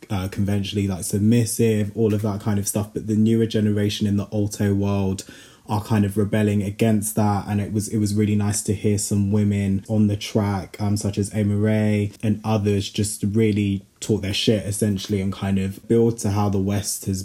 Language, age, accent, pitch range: English, 20-39, British, 100-110 Hz